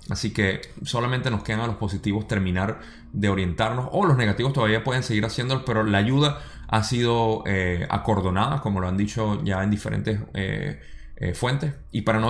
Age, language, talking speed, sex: 20-39, Spanish, 190 wpm, male